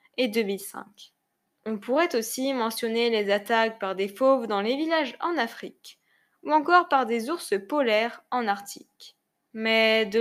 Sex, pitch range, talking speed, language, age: female, 220-285 Hz, 155 wpm, French, 10-29